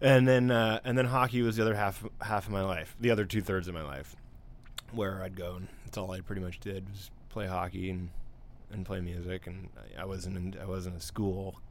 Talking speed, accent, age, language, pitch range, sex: 230 wpm, American, 20-39, English, 95-115 Hz, male